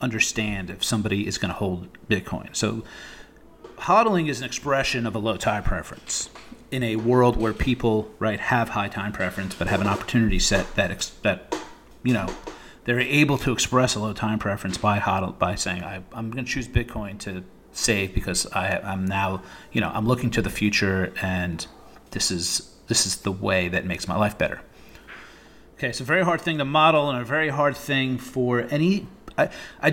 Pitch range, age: 100-130 Hz, 30-49